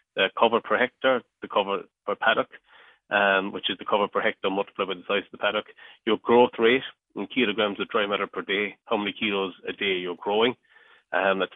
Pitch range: 100-115 Hz